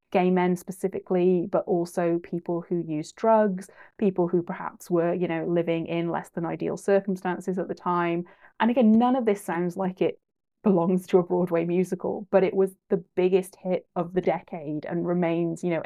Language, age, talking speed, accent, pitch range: English, 20-39, 190 wpm, British, 175-195 Hz